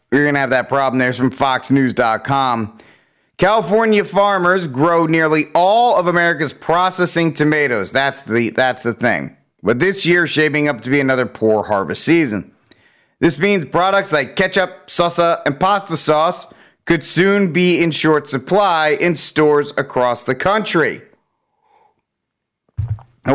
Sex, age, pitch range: male, 30-49, 125-175 Hz